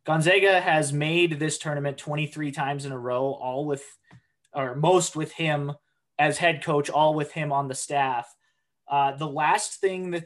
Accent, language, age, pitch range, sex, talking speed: American, English, 20-39, 140-160 Hz, male, 175 wpm